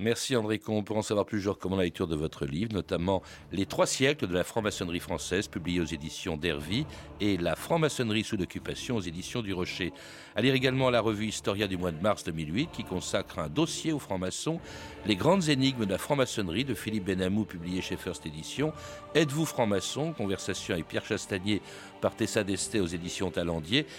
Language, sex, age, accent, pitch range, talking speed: French, male, 60-79, French, 95-125 Hz, 215 wpm